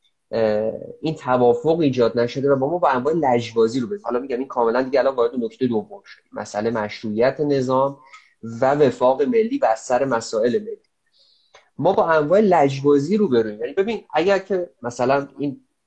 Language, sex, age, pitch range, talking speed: Persian, male, 30-49, 120-180 Hz, 165 wpm